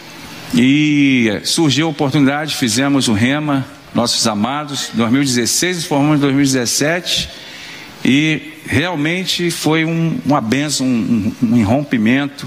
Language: Portuguese